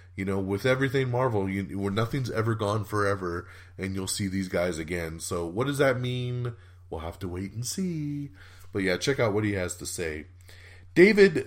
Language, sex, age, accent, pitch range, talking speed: English, male, 30-49, American, 90-120 Hz, 200 wpm